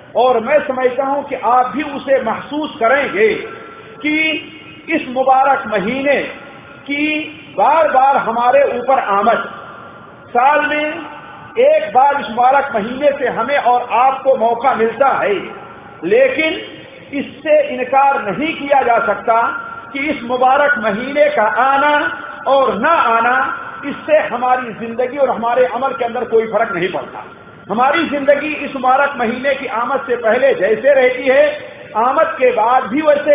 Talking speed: 140 wpm